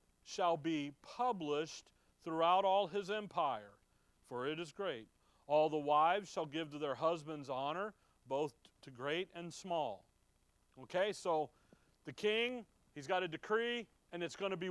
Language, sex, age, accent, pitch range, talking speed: English, male, 40-59, American, 155-205 Hz, 155 wpm